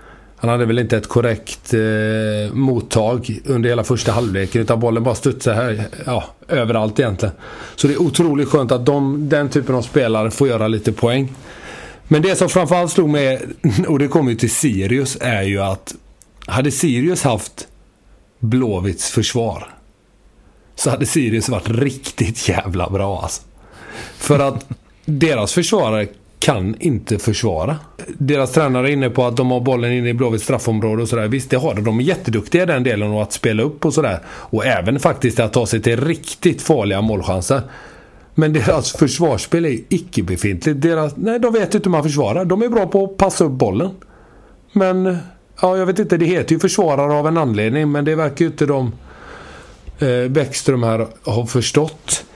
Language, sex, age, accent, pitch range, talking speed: Swedish, male, 30-49, native, 115-155 Hz, 175 wpm